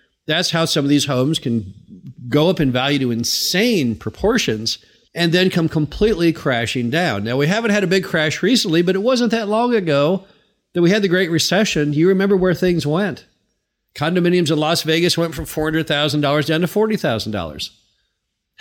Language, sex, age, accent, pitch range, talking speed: English, male, 50-69, American, 130-185 Hz, 175 wpm